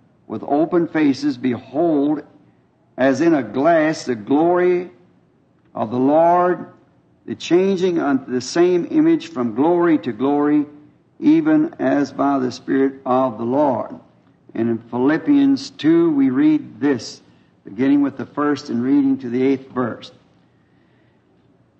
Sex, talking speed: male, 130 wpm